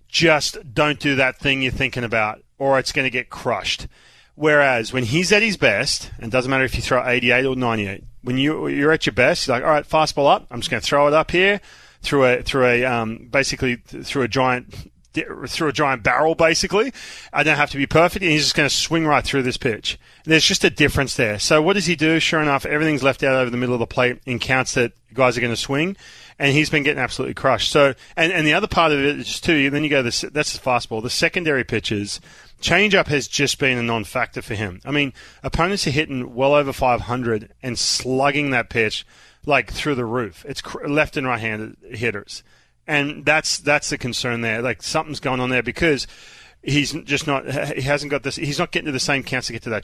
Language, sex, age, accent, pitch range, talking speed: English, male, 30-49, Australian, 125-155 Hz, 235 wpm